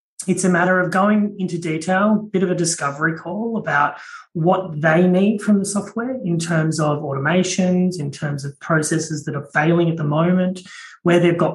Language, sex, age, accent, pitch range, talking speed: English, male, 30-49, Australian, 150-185 Hz, 190 wpm